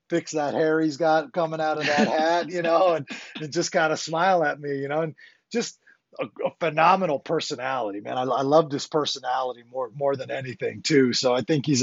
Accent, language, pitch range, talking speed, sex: American, English, 135-160 Hz, 220 wpm, male